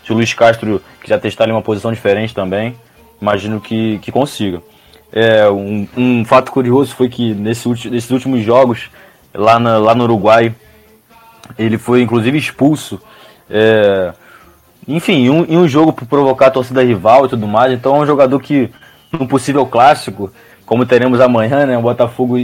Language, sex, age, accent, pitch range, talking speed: Portuguese, male, 20-39, Brazilian, 110-130 Hz, 170 wpm